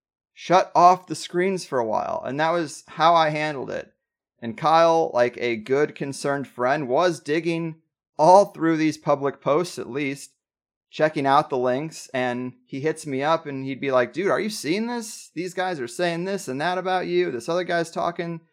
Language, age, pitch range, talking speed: English, 30-49, 125-160 Hz, 200 wpm